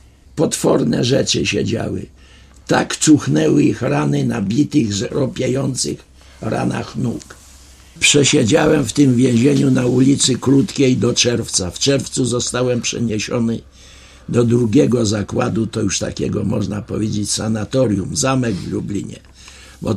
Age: 60-79